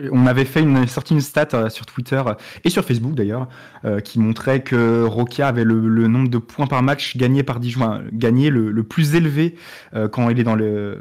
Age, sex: 20-39, male